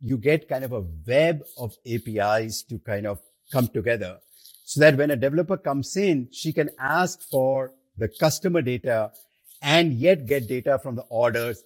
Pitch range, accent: 115-155 Hz, Indian